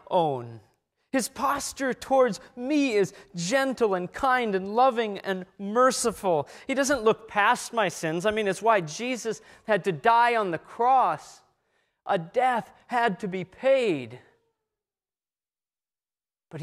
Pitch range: 175-230 Hz